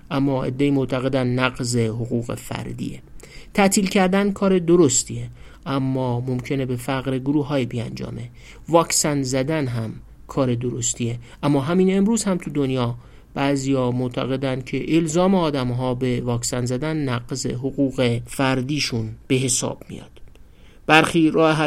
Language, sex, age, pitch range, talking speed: Persian, male, 50-69, 125-155 Hz, 125 wpm